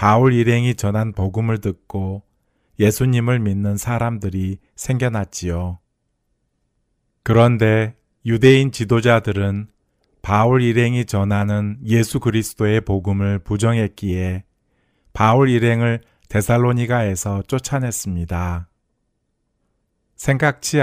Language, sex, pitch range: Korean, male, 100-120 Hz